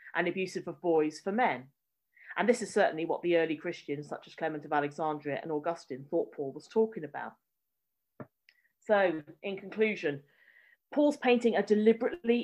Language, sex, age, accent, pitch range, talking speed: English, female, 40-59, British, 165-215 Hz, 160 wpm